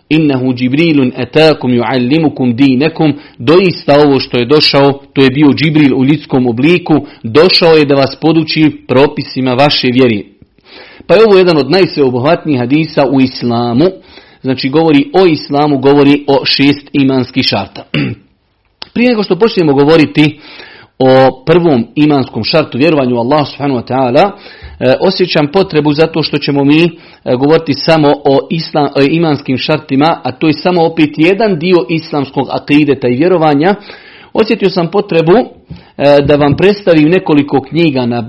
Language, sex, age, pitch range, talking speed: Croatian, male, 40-59, 130-160 Hz, 135 wpm